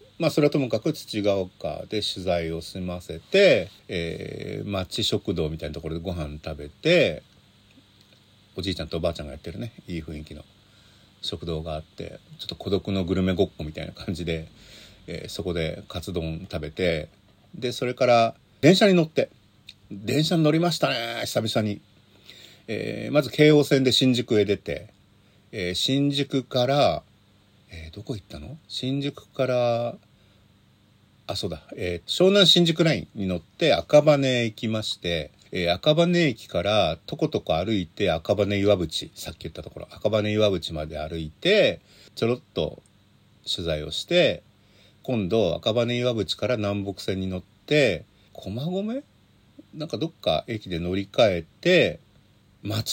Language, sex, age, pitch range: Japanese, male, 40-59, 90-125 Hz